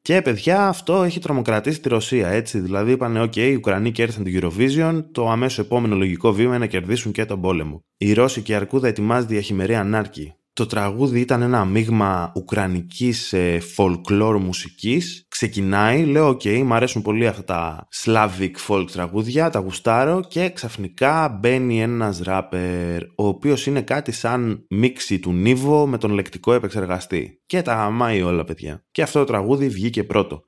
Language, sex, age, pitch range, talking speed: Greek, male, 20-39, 95-135 Hz, 165 wpm